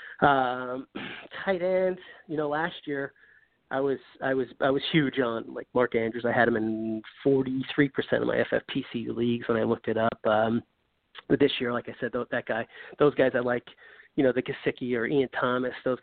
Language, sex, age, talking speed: English, male, 30-49, 200 wpm